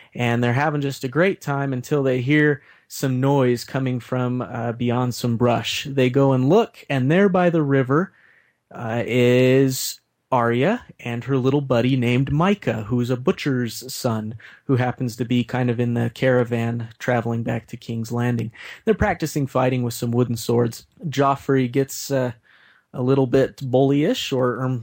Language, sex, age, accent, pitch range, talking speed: English, male, 30-49, American, 120-145 Hz, 170 wpm